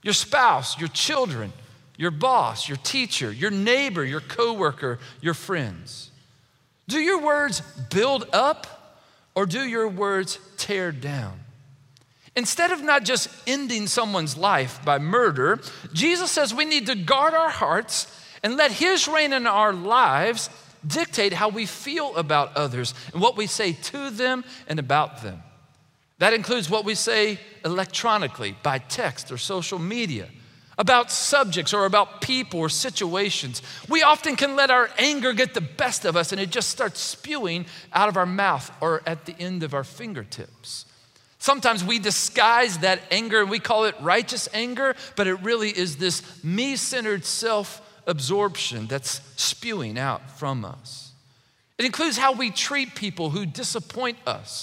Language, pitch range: English, 150-245 Hz